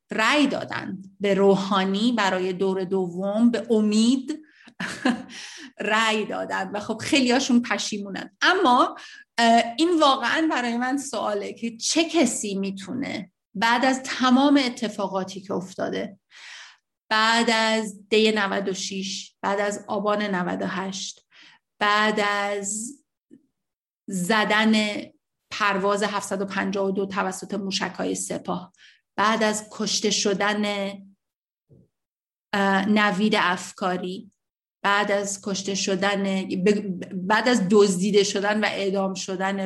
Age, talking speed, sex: 30-49, 95 wpm, female